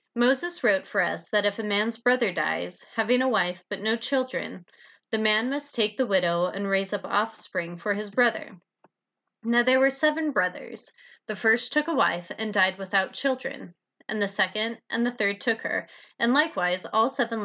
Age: 30-49